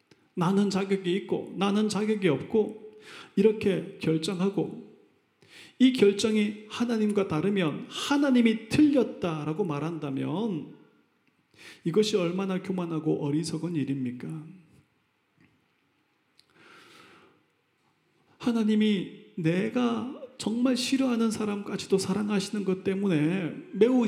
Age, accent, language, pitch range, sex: 30-49, native, Korean, 150-210 Hz, male